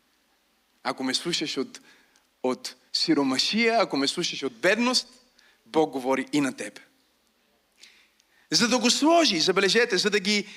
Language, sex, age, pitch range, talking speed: Bulgarian, male, 40-59, 145-235 Hz, 135 wpm